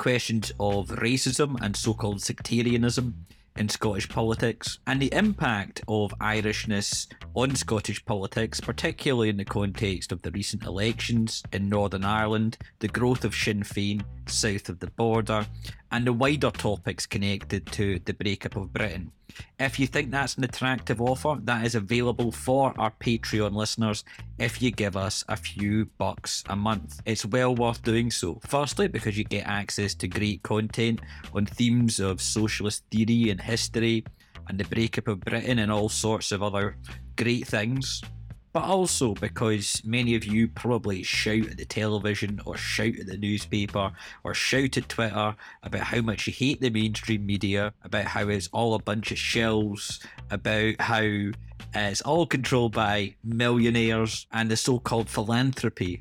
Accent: British